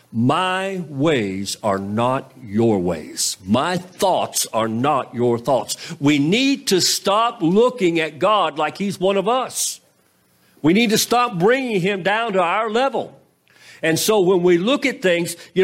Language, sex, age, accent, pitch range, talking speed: English, male, 50-69, American, 110-180 Hz, 160 wpm